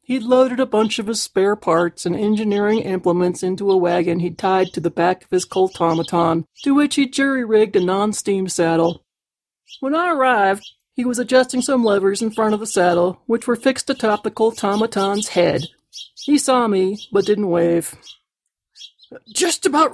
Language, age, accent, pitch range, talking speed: English, 40-59, American, 185-255 Hz, 170 wpm